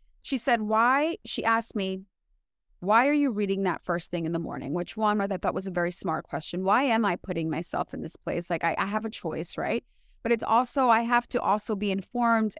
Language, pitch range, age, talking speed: English, 180-225 Hz, 20-39, 235 wpm